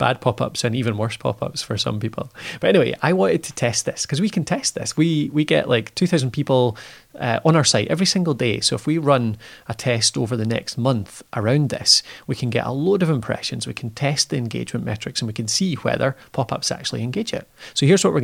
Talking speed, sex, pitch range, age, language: 240 wpm, male, 115-150 Hz, 30-49, English